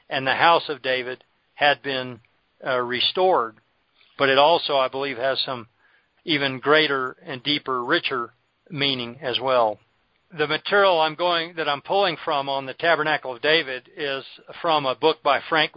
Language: English